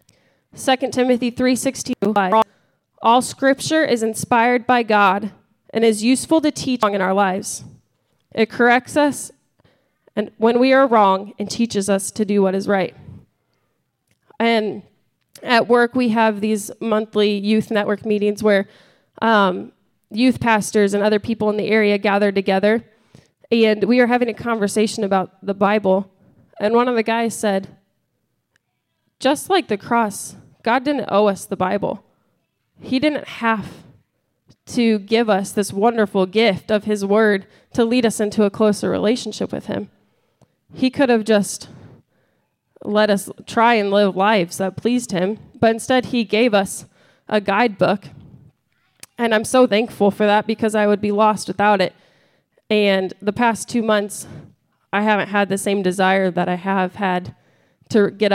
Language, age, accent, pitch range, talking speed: English, 20-39, American, 195-230 Hz, 155 wpm